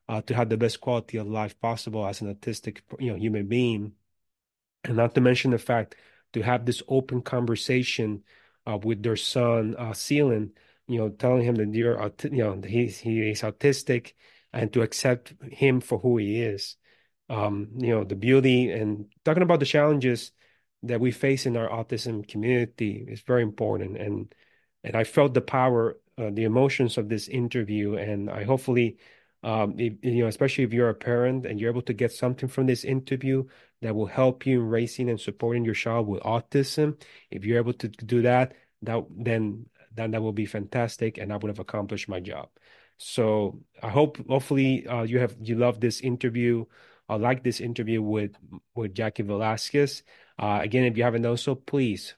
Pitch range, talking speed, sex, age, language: 110-125 Hz, 190 wpm, male, 30-49, English